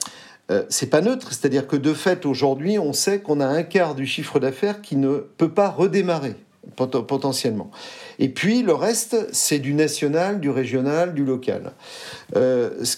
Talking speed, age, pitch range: 160 wpm, 50-69, 140-175 Hz